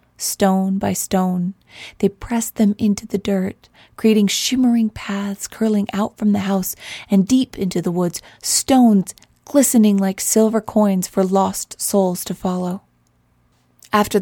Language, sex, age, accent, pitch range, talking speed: English, female, 30-49, American, 190-225 Hz, 140 wpm